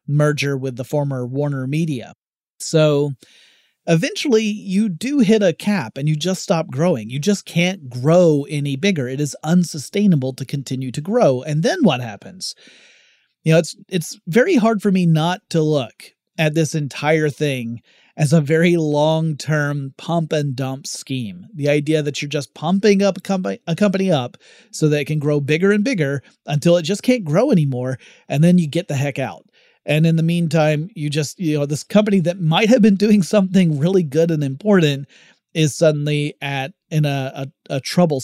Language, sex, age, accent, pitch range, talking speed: English, male, 30-49, American, 140-180 Hz, 185 wpm